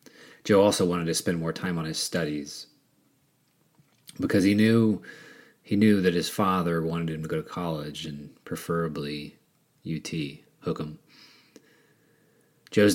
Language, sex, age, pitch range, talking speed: English, male, 30-49, 80-95 Hz, 140 wpm